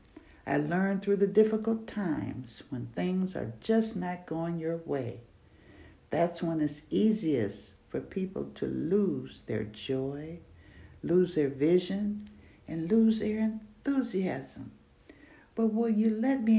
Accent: American